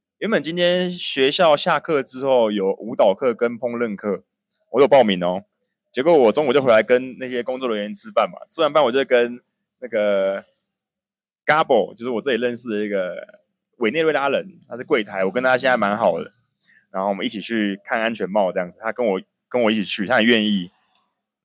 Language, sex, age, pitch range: Chinese, male, 20-39, 105-150 Hz